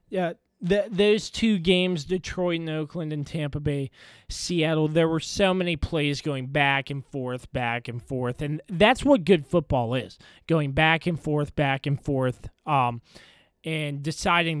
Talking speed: 160 wpm